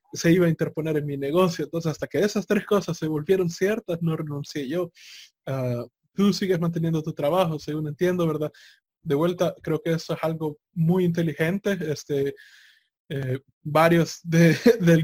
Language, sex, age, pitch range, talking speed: Spanish, male, 20-39, 155-190 Hz, 170 wpm